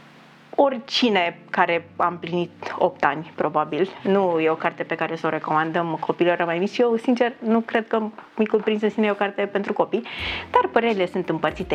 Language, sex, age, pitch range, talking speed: Romanian, female, 30-49, 175-235 Hz, 185 wpm